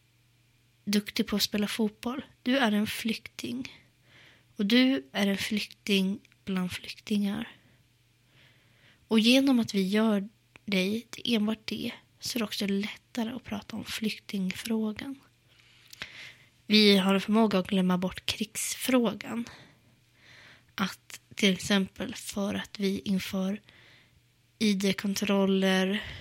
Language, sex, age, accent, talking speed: Swedish, female, 20-39, native, 115 wpm